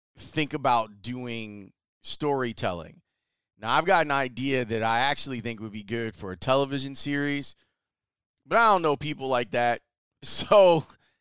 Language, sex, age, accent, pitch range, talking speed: English, male, 30-49, American, 110-140 Hz, 150 wpm